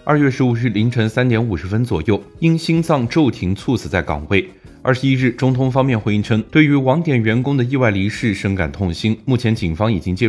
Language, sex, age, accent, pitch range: Chinese, male, 20-39, native, 95-130 Hz